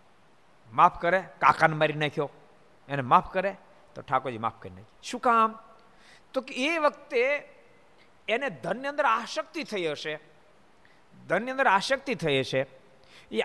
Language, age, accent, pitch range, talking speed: Gujarati, 50-69, native, 155-245 Hz, 140 wpm